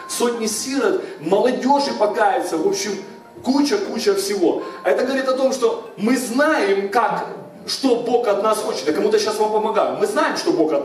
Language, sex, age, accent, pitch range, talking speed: Russian, male, 30-49, native, 215-350 Hz, 175 wpm